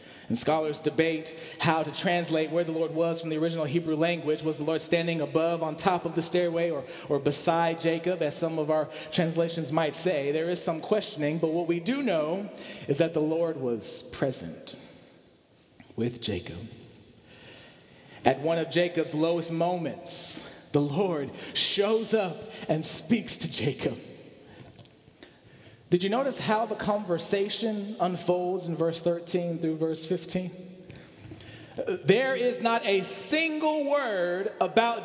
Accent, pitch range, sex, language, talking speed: American, 165-245 Hz, male, English, 150 wpm